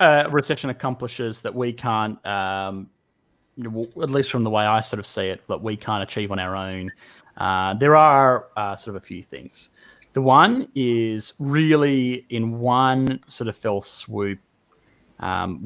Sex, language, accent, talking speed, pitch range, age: male, English, Australian, 170 wpm, 95-120 Hz, 30-49